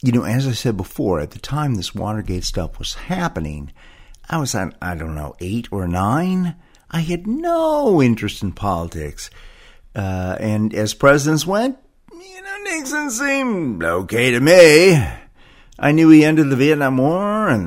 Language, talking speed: English, 165 wpm